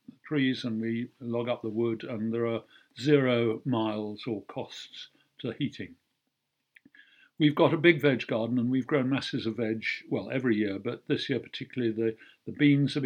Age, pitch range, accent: 50-69, 115-140 Hz, British